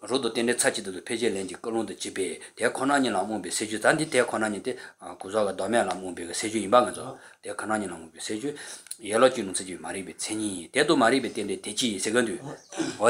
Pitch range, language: 110-145 Hz, English